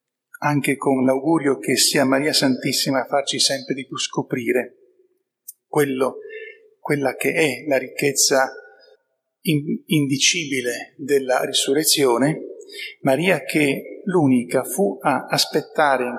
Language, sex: Italian, male